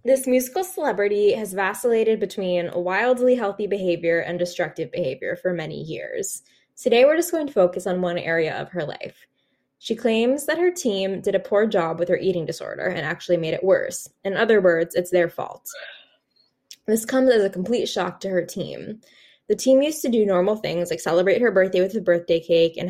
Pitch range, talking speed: 175-220 Hz, 200 wpm